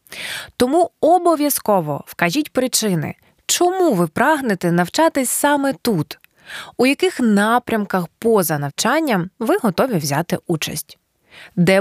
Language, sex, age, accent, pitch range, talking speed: Ukrainian, female, 20-39, native, 175-270 Hz, 100 wpm